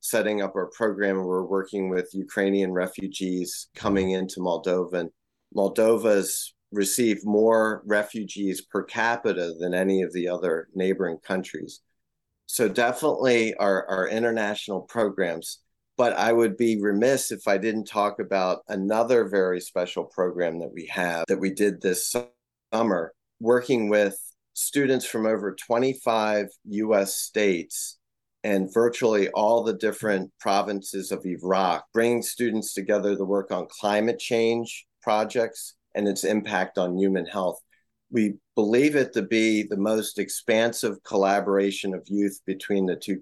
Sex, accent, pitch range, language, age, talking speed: male, American, 95-110 Hz, English, 30-49, 135 wpm